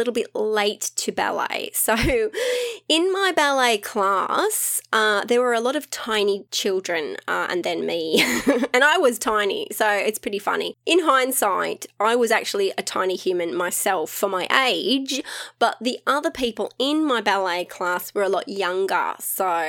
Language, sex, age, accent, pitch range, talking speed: English, female, 20-39, Australian, 200-320 Hz, 170 wpm